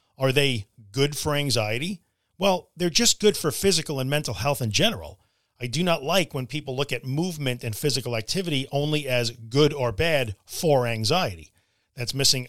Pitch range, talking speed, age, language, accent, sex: 120-155 Hz, 180 wpm, 40-59, English, American, male